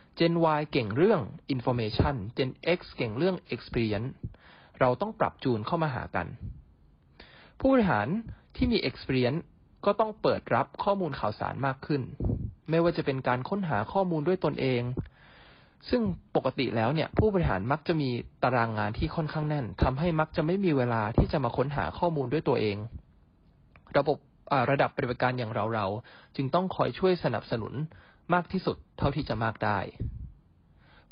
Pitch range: 110-160 Hz